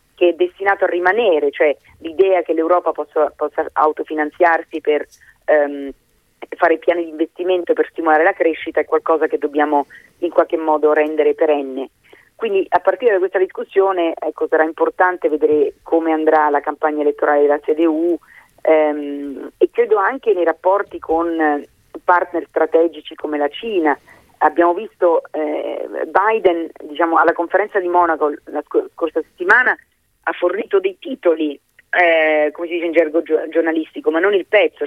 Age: 40-59